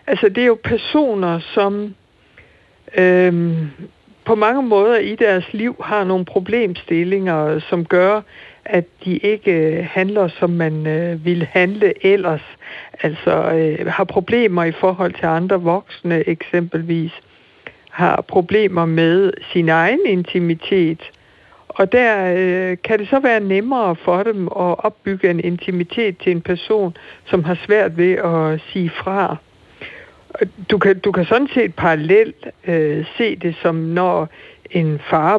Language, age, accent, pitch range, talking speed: Danish, 60-79, native, 165-205 Hz, 135 wpm